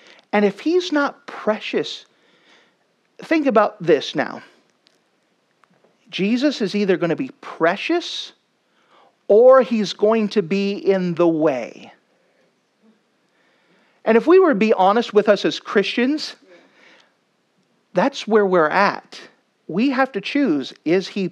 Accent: American